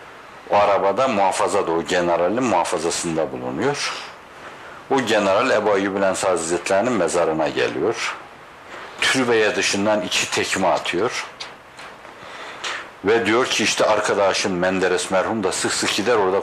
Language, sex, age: Turkish, male, 60-79